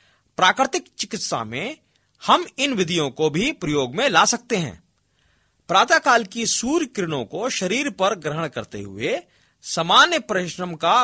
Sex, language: male, Hindi